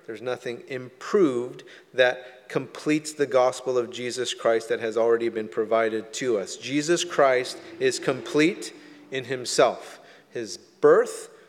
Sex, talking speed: male, 130 wpm